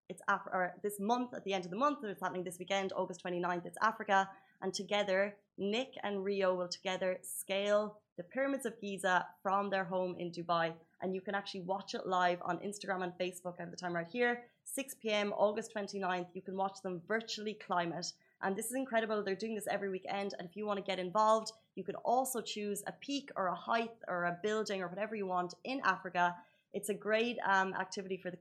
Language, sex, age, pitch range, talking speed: Arabic, female, 20-39, 185-215 Hz, 220 wpm